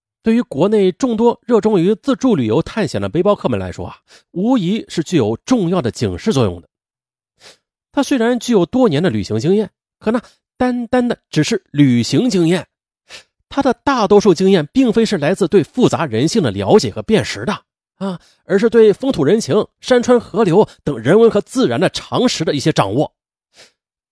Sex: male